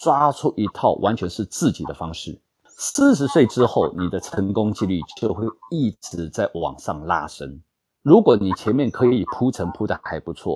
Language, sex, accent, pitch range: Chinese, male, native, 85-120 Hz